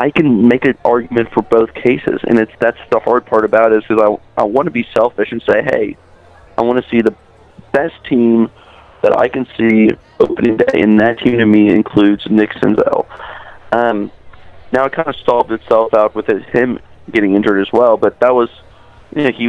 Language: English